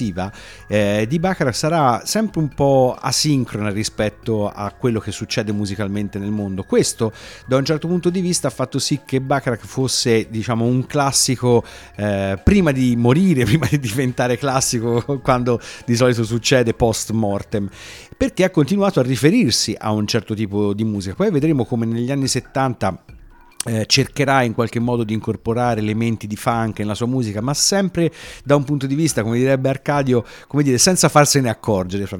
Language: Italian